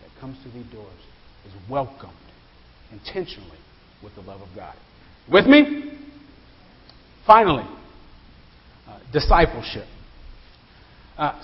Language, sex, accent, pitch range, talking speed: English, male, American, 120-195 Hz, 95 wpm